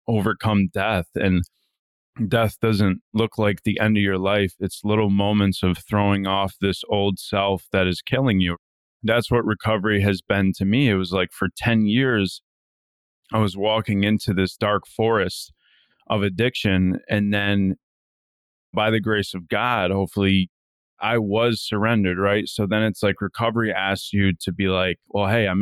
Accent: American